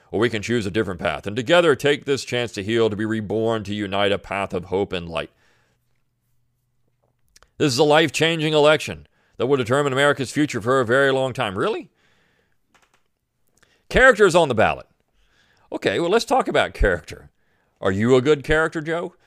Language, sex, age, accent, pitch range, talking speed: English, male, 40-59, American, 110-150 Hz, 180 wpm